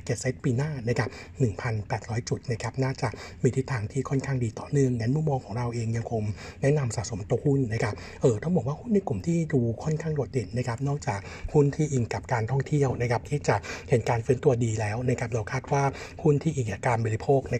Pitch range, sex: 115-140 Hz, male